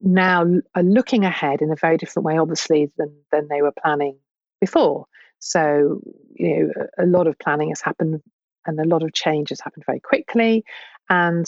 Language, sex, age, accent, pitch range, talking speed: English, female, 50-69, British, 155-200 Hz, 190 wpm